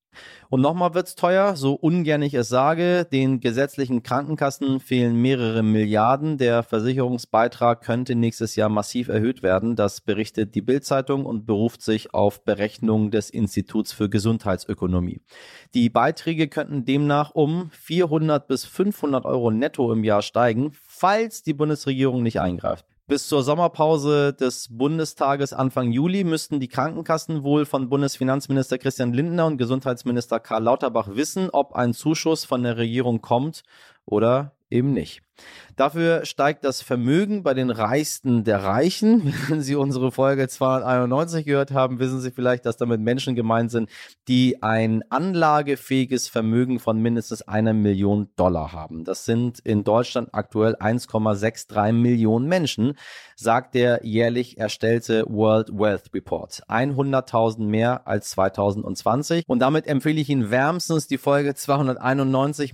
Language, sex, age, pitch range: German, male, 30-49, 115-140 Hz